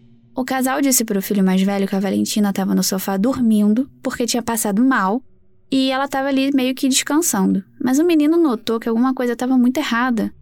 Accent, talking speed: Brazilian, 205 wpm